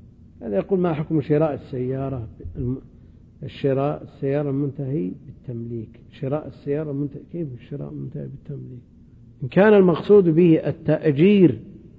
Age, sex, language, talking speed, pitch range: 50-69, male, Arabic, 115 wpm, 120-170 Hz